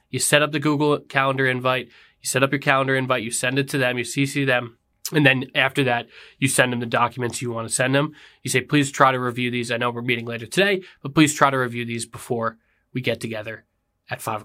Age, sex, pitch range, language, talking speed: 20-39, male, 130-155 Hz, English, 250 wpm